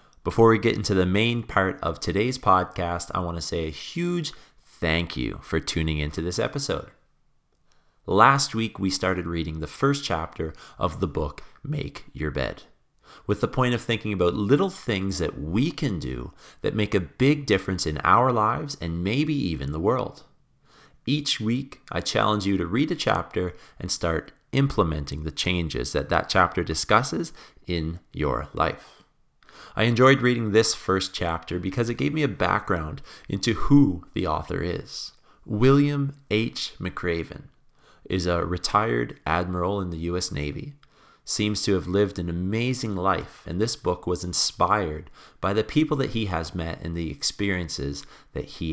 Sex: male